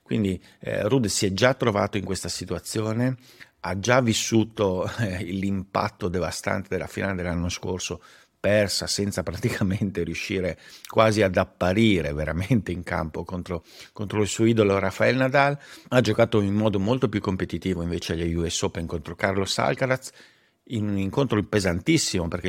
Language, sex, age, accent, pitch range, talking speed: Italian, male, 50-69, native, 90-110 Hz, 150 wpm